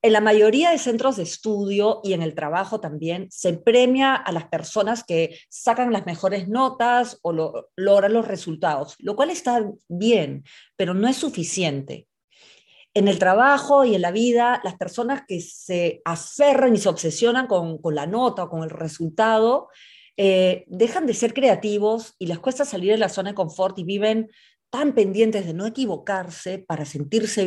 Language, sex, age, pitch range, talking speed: Spanish, female, 40-59, 175-230 Hz, 175 wpm